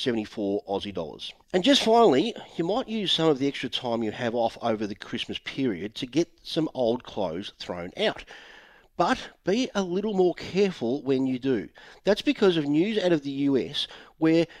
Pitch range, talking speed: 140-200 Hz, 190 wpm